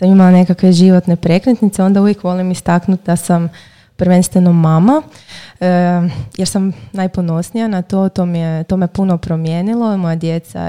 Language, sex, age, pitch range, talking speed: Croatian, female, 20-39, 175-195 Hz, 165 wpm